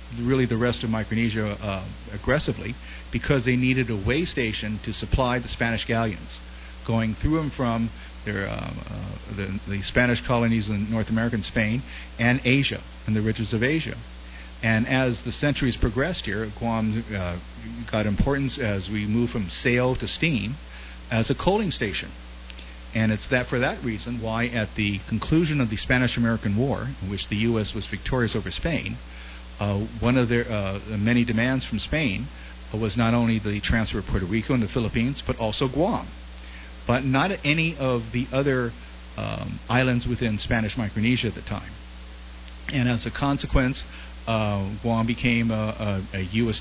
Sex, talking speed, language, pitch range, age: male, 170 wpm, English, 100-125 Hz, 50-69